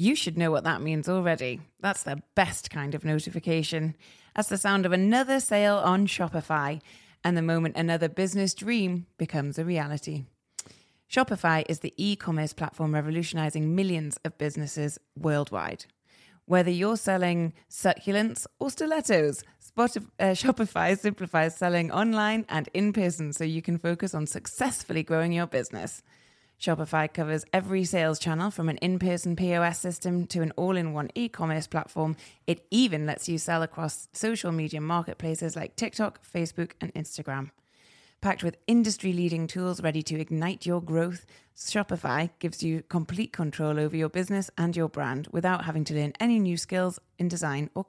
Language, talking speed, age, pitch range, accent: English, 150 wpm, 20-39, 155-190 Hz, British